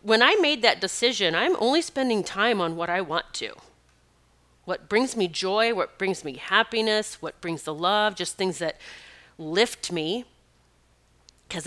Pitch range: 155-225 Hz